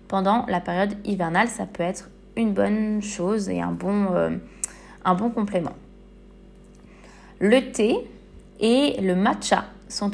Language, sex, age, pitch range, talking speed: French, female, 20-39, 180-225 Hz, 125 wpm